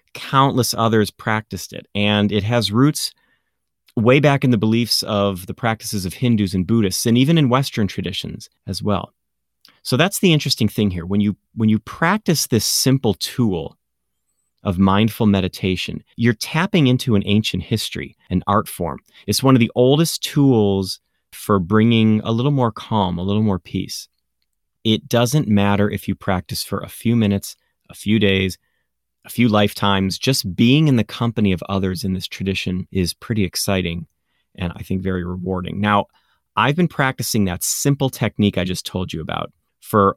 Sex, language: male, English